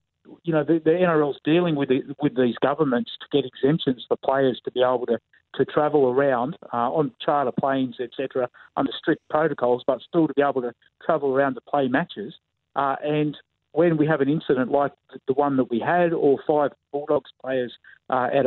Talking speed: 200 wpm